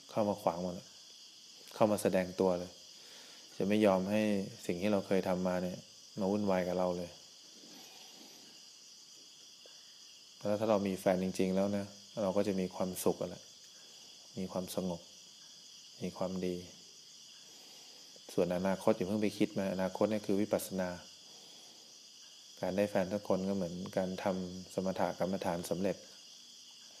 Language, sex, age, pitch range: English, male, 20-39, 90-105 Hz